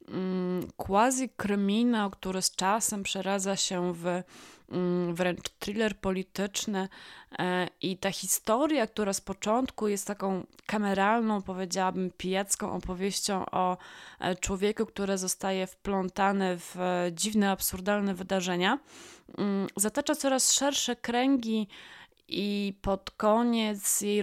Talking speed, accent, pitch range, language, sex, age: 95 wpm, native, 185-215 Hz, Polish, female, 20-39